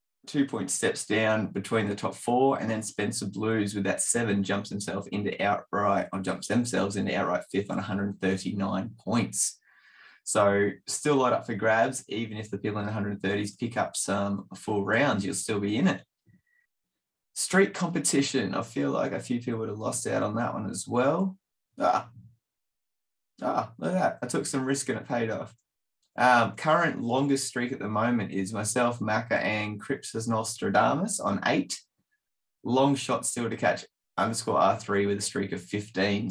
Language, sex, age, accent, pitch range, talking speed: English, male, 20-39, Australian, 100-130 Hz, 175 wpm